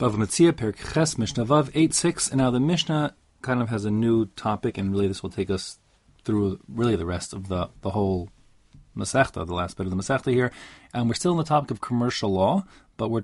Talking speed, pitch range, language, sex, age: 205 wpm, 100-125 Hz, English, male, 30-49